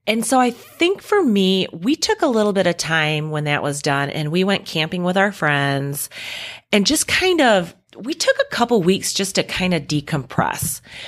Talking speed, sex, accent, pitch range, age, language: 205 wpm, female, American, 155-210 Hz, 30-49, English